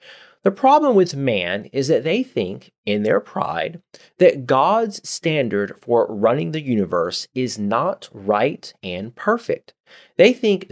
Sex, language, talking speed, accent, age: male, English, 140 wpm, American, 30-49